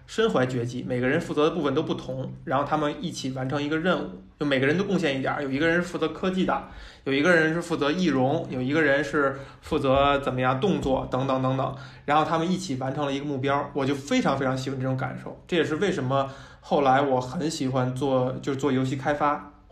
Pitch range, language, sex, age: 130-150 Hz, Chinese, male, 20-39